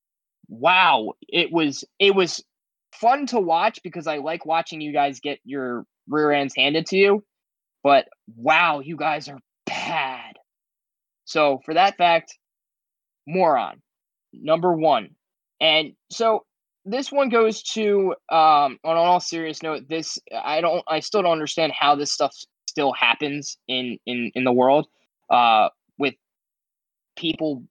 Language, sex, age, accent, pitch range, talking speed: English, male, 20-39, American, 135-170 Hz, 140 wpm